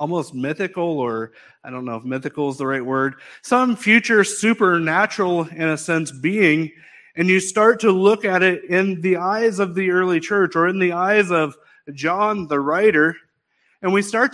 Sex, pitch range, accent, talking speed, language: male, 155-200 Hz, American, 185 wpm, English